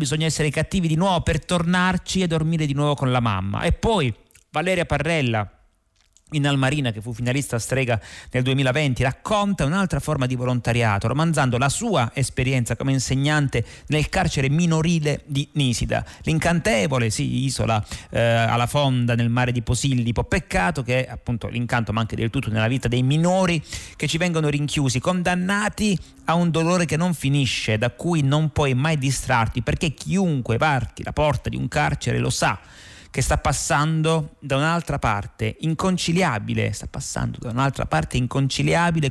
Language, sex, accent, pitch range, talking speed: Italian, male, native, 120-155 Hz, 160 wpm